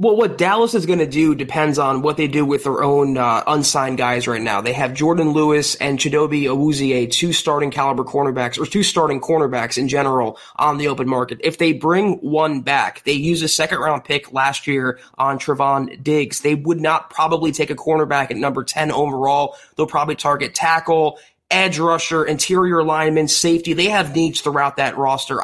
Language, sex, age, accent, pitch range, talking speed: English, male, 20-39, American, 140-165 Hz, 195 wpm